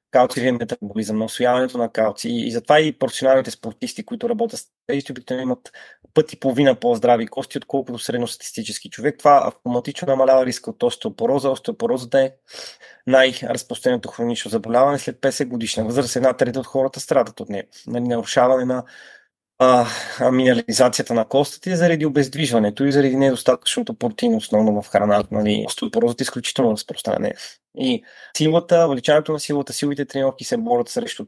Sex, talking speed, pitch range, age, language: male, 150 wpm, 125-205 Hz, 30-49, Bulgarian